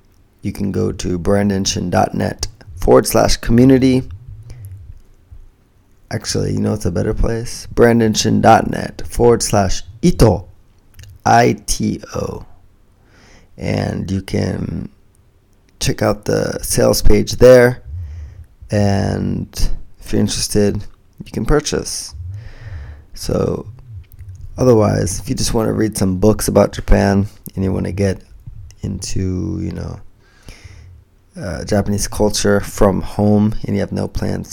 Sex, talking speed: male, 115 wpm